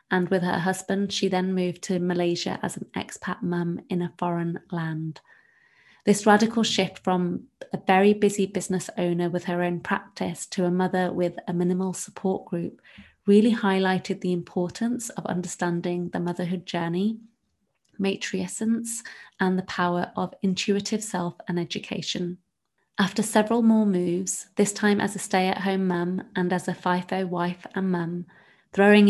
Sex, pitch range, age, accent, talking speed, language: female, 175-200 Hz, 30-49, British, 155 wpm, English